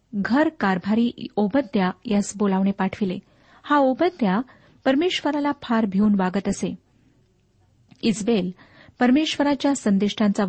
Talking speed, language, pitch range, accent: 85 wpm, Marathi, 195-255 Hz, native